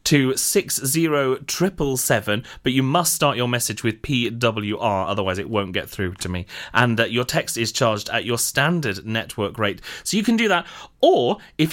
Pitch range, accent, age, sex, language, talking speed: 115-170 Hz, British, 30-49, male, English, 180 wpm